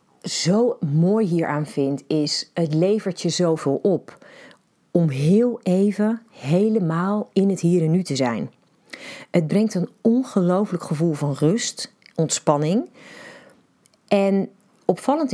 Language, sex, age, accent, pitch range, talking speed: Dutch, female, 40-59, Dutch, 155-225 Hz, 120 wpm